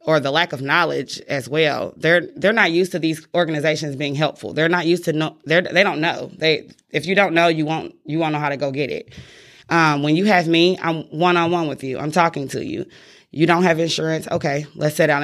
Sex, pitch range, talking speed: female, 150-170 Hz, 235 wpm